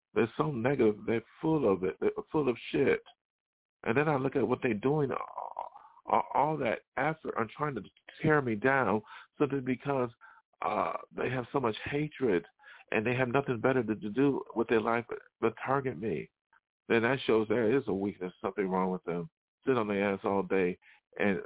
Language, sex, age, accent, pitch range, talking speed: English, male, 50-69, American, 100-120 Hz, 195 wpm